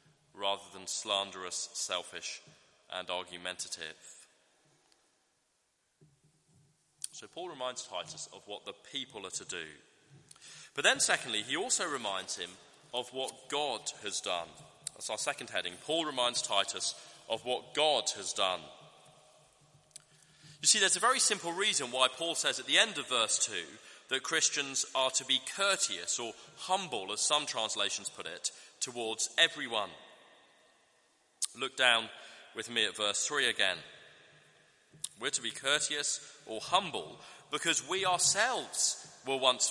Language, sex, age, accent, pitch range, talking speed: English, male, 30-49, British, 115-150 Hz, 140 wpm